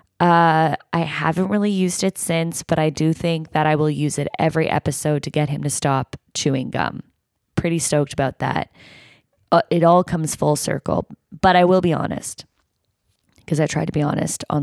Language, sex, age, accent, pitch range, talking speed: English, female, 20-39, American, 155-220 Hz, 195 wpm